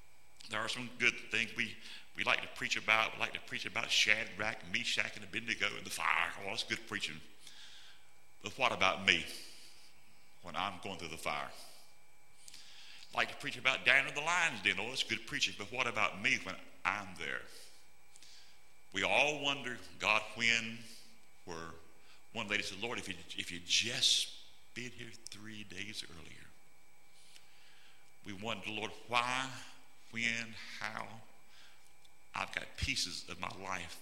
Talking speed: 155 wpm